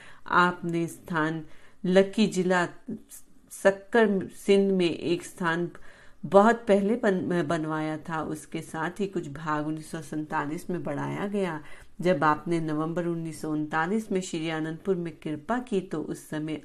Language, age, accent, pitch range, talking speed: Hindi, 40-59, native, 155-195 Hz, 125 wpm